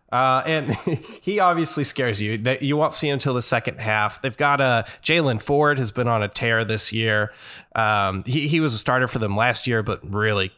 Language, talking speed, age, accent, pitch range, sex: English, 225 wpm, 20-39, American, 105-135 Hz, male